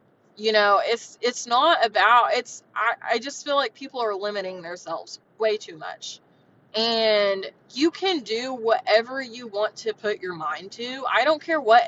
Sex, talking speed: female, 175 wpm